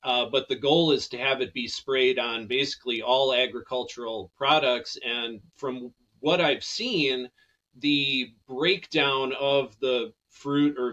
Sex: male